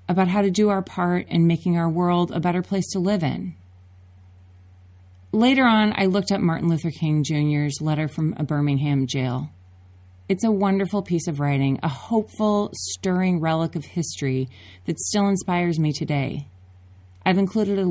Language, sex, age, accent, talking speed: English, female, 30-49, American, 170 wpm